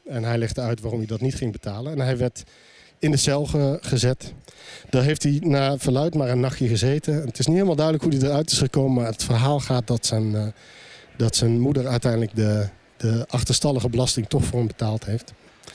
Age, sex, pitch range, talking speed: 50-69, male, 120-150 Hz, 205 wpm